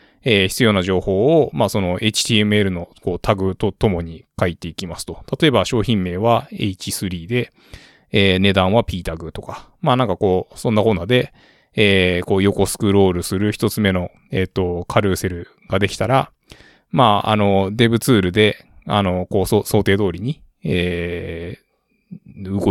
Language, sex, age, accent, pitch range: Japanese, male, 20-39, native, 95-120 Hz